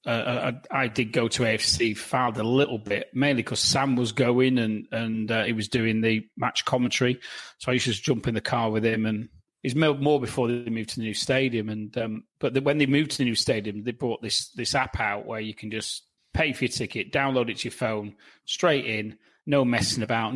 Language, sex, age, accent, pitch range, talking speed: English, male, 30-49, British, 110-130 Hz, 240 wpm